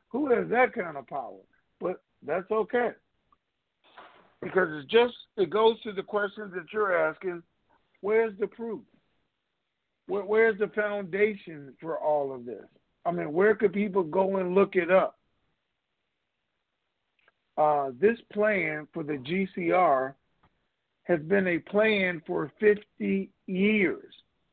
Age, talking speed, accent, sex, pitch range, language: 50-69, 130 wpm, American, male, 175-215 Hz, English